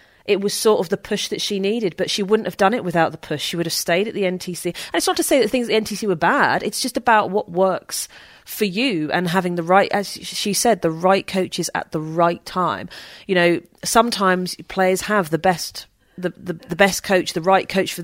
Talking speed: 245 wpm